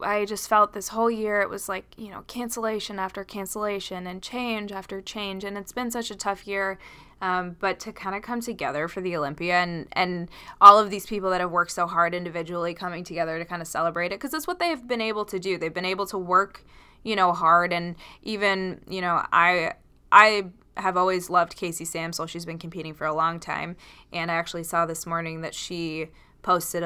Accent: American